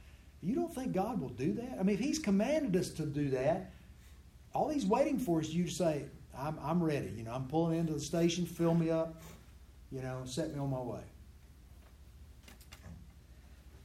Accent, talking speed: American, 195 wpm